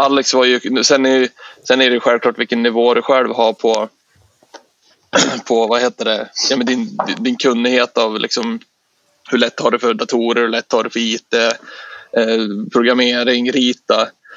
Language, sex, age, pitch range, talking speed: Swedish, male, 20-39, 115-130 Hz, 170 wpm